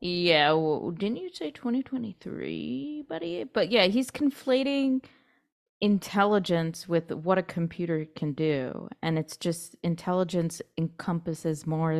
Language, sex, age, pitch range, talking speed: English, female, 20-39, 165-205 Hz, 125 wpm